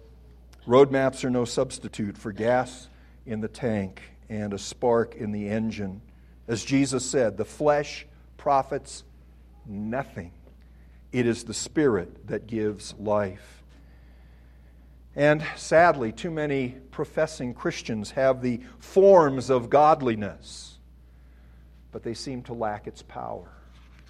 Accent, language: American, English